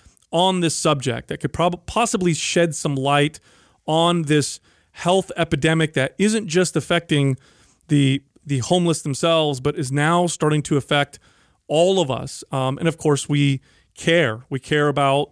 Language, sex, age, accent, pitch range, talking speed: English, male, 30-49, American, 140-170 Hz, 155 wpm